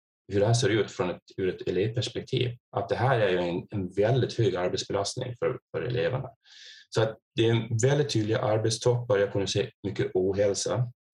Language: Swedish